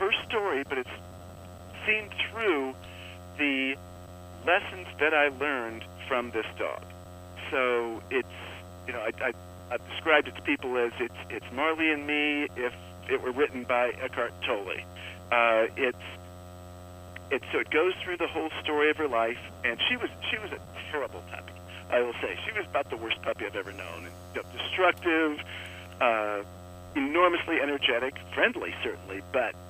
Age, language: 50-69, English